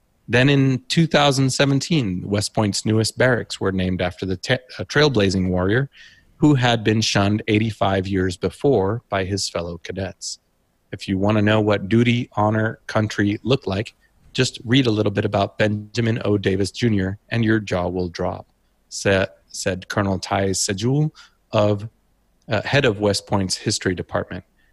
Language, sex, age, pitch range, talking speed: English, male, 30-49, 95-110 Hz, 160 wpm